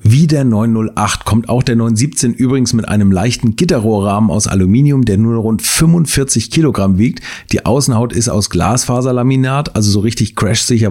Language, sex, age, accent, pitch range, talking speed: German, male, 40-59, German, 100-125 Hz, 160 wpm